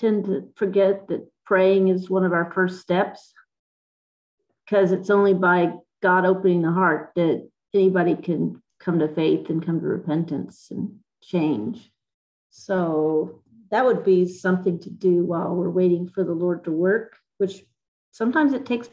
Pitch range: 180-210 Hz